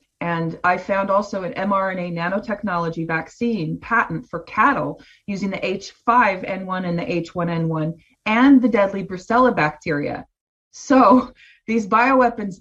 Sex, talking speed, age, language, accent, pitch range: female, 120 wpm, 30-49, English, American, 170-215 Hz